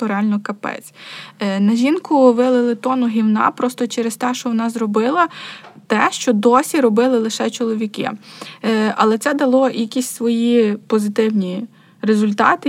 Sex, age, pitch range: female, 20-39, 220-245 Hz